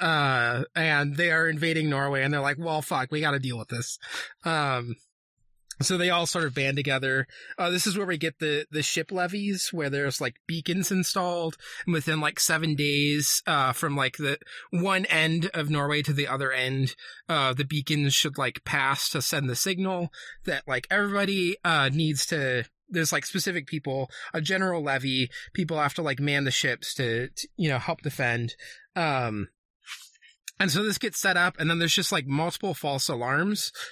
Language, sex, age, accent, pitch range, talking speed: English, male, 20-39, American, 135-170 Hz, 190 wpm